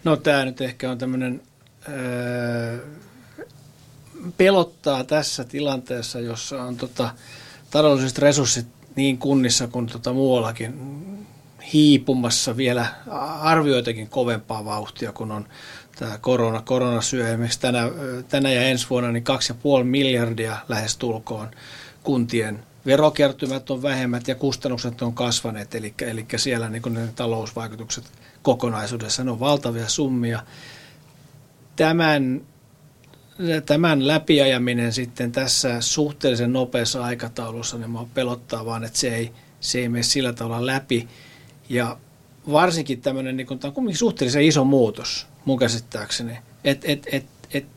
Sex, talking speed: male, 115 wpm